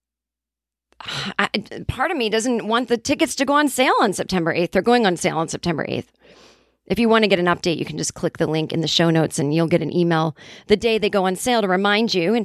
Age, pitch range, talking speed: 30-49, 180-245 Hz, 260 wpm